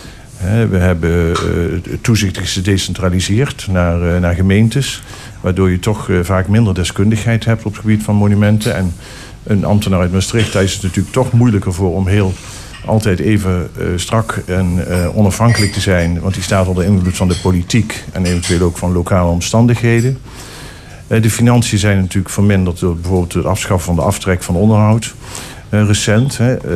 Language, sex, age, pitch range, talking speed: Dutch, male, 50-69, 90-105 Hz, 155 wpm